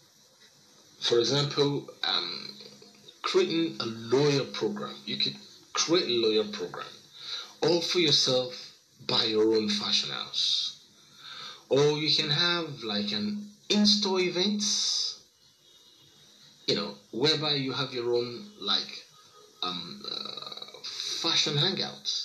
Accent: Nigerian